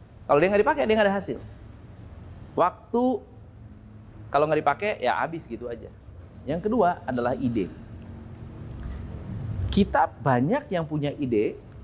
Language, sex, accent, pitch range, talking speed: Indonesian, male, native, 100-170 Hz, 125 wpm